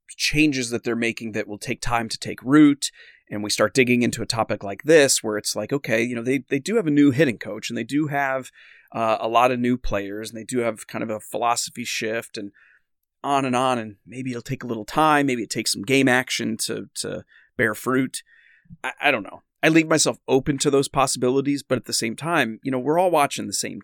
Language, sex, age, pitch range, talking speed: English, male, 30-49, 110-135 Hz, 245 wpm